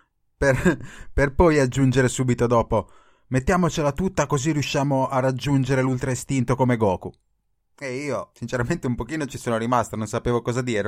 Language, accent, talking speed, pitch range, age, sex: Italian, native, 155 wpm, 110-140 Hz, 20-39, male